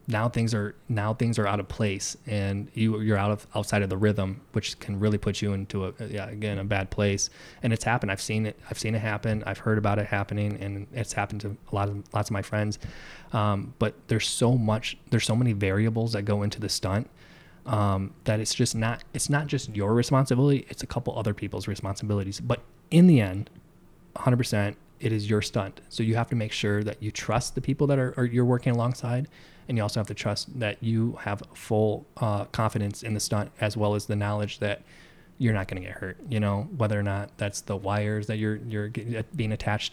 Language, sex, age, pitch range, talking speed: English, male, 20-39, 100-115 Hz, 225 wpm